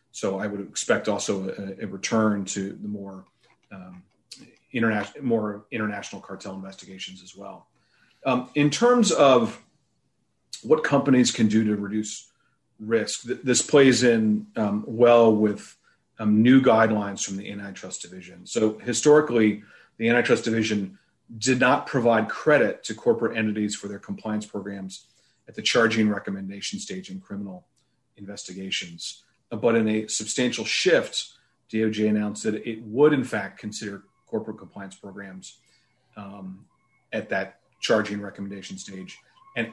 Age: 40-59